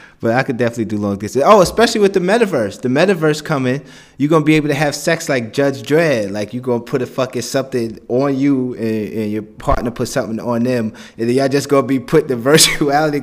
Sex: male